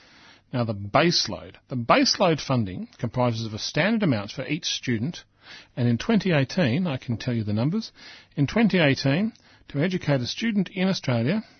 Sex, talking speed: male, 160 wpm